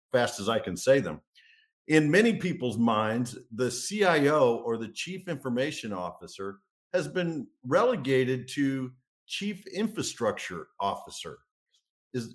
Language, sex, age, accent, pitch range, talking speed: English, male, 50-69, American, 125-185 Hz, 120 wpm